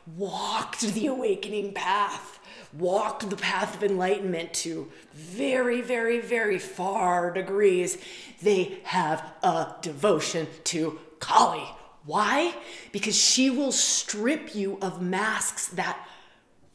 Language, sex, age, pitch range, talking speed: English, female, 20-39, 215-290 Hz, 110 wpm